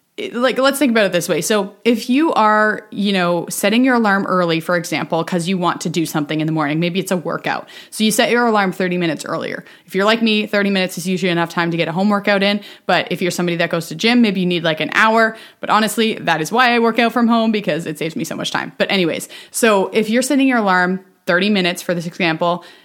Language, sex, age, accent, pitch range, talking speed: English, female, 20-39, American, 175-225 Hz, 265 wpm